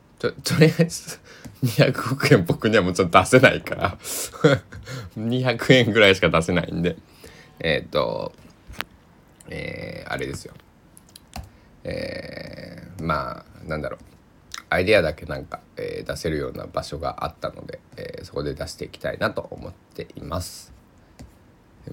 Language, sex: Japanese, male